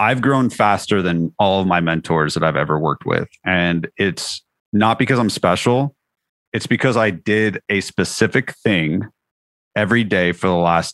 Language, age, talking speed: English, 30-49, 170 wpm